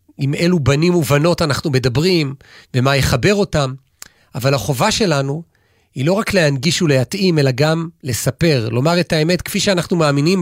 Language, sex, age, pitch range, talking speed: Hebrew, male, 40-59, 135-175 Hz, 150 wpm